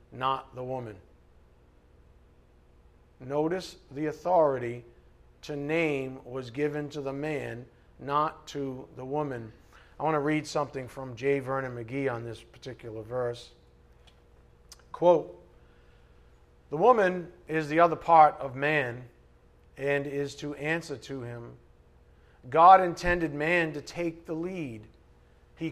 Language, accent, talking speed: English, American, 125 wpm